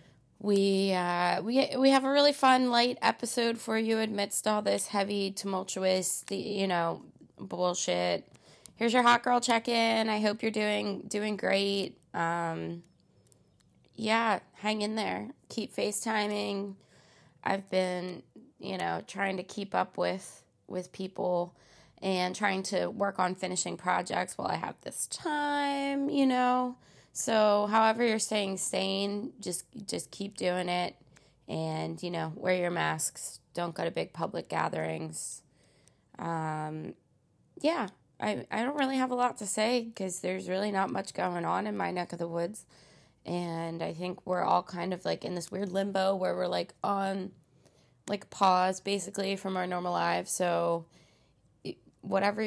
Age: 20-39